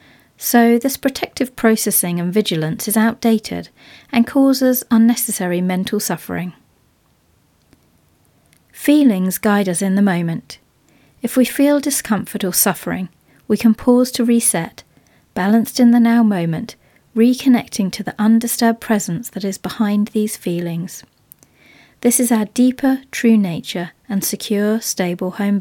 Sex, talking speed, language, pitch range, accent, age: female, 130 wpm, English, 185-240 Hz, British, 40-59